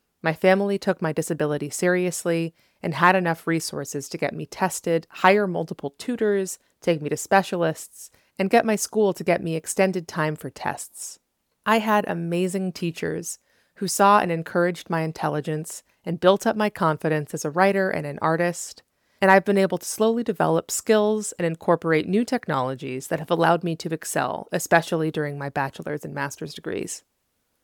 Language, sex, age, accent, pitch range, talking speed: English, female, 30-49, American, 160-195 Hz, 170 wpm